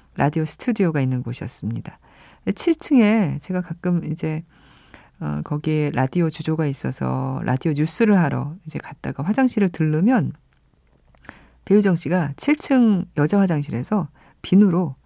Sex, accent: female, native